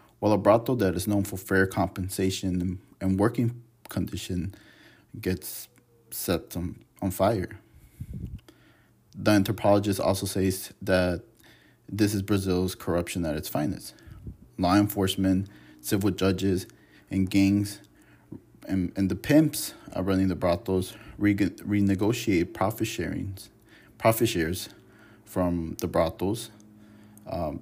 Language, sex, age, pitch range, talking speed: English, male, 20-39, 95-105 Hz, 110 wpm